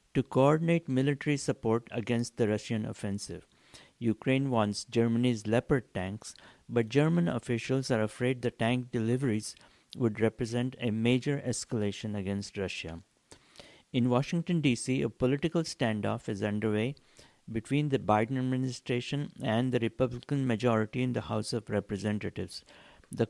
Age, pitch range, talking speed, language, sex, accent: 60-79, 110-135 Hz, 130 wpm, English, male, Indian